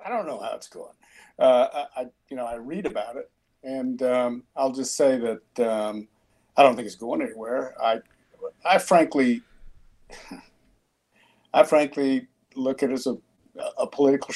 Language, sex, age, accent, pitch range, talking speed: English, male, 50-69, American, 120-155 Hz, 165 wpm